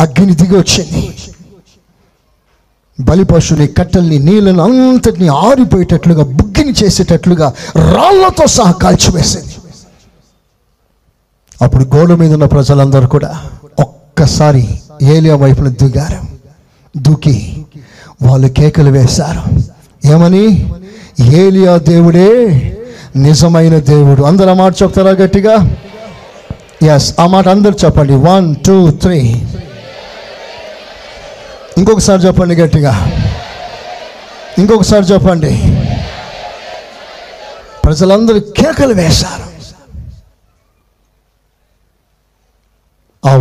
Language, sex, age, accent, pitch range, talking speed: Telugu, male, 50-69, native, 140-185 Hz, 75 wpm